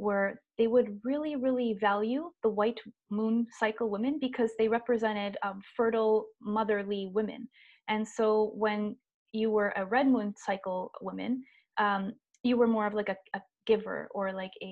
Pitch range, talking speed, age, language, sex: 205-245 Hz, 165 wpm, 20-39, English, female